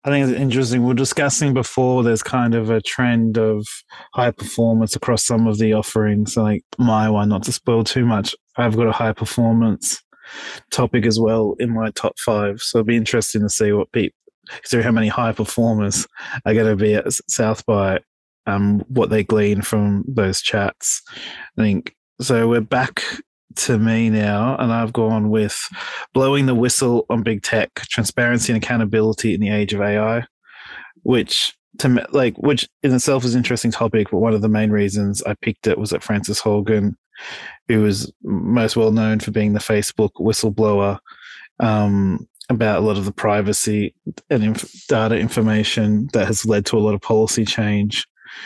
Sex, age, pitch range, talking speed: male, 20-39, 105-120 Hz, 180 wpm